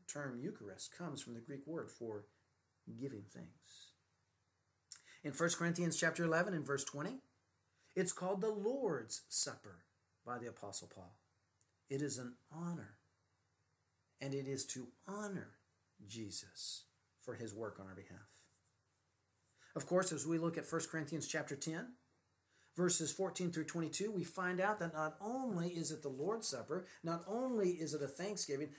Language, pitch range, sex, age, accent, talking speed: English, 120-180 Hz, male, 50-69, American, 155 wpm